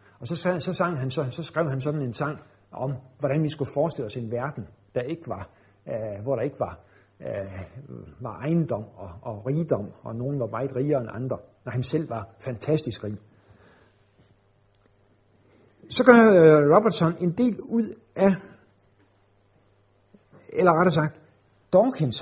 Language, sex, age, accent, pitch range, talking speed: Danish, male, 60-79, native, 100-160 Hz, 160 wpm